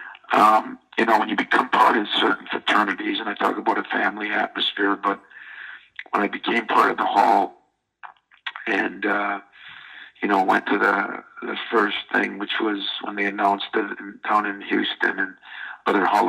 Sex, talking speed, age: male, 175 wpm, 50-69